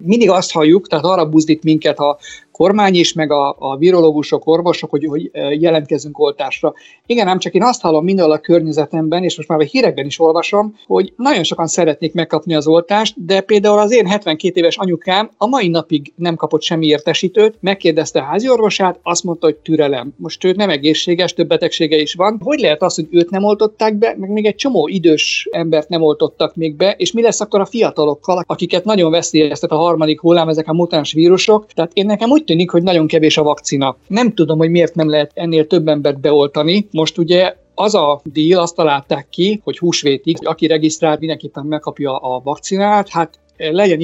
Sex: male